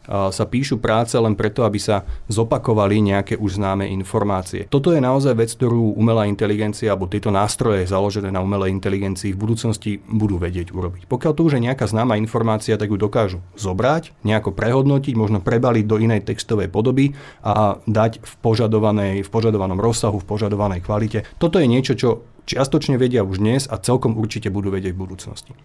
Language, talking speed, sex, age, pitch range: Slovak, 175 wpm, male, 30-49, 100-125 Hz